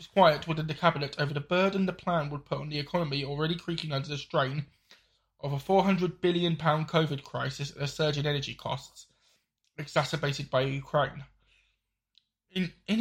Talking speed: 170 wpm